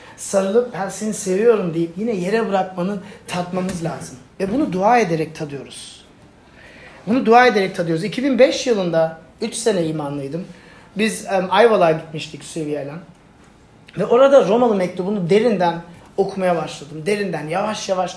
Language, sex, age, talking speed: Turkish, male, 40-59, 130 wpm